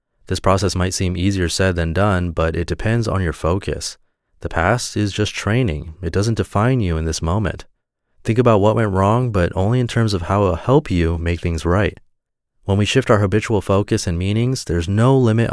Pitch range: 85-110 Hz